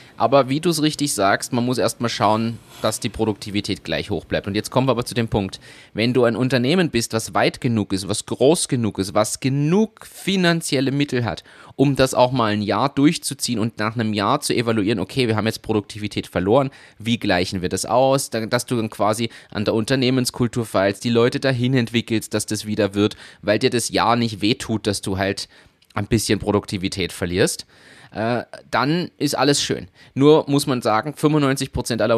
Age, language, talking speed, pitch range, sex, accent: 30-49, German, 195 wpm, 100-130 Hz, male, German